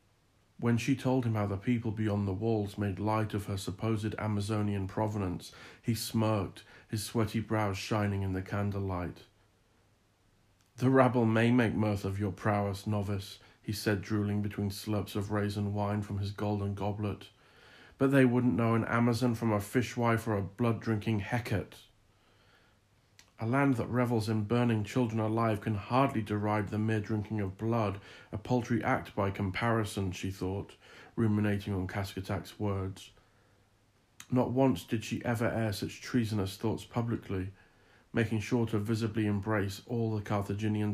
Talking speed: 155 wpm